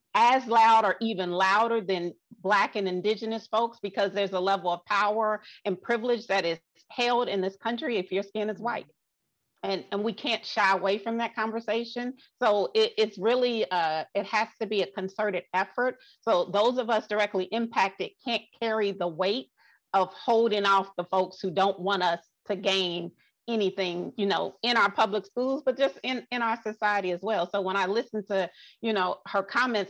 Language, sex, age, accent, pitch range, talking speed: English, female, 40-59, American, 190-225 Hz, 190 wpm